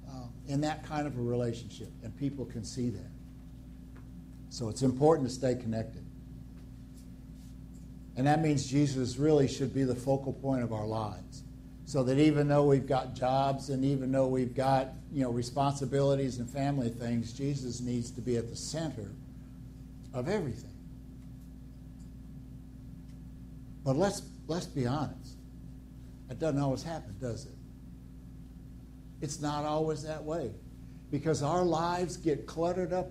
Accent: American